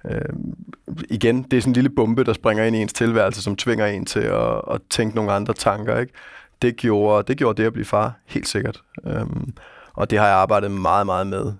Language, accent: Danish, native